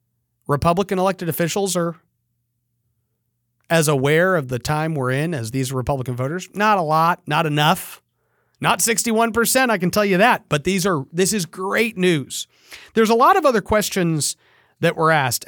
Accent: American